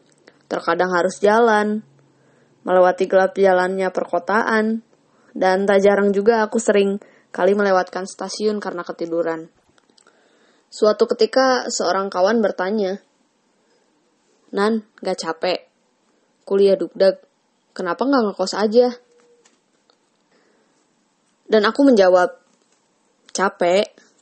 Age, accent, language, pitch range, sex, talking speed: 20-39, native, Indonesian, 180-225 Hz, female, 90 wpm